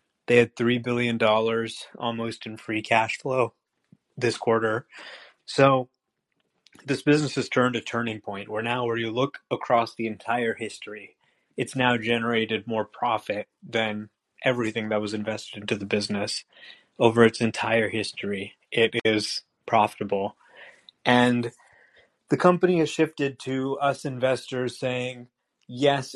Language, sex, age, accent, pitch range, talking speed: English, male, 30-49, American, 110-125 Hz, 135 wpm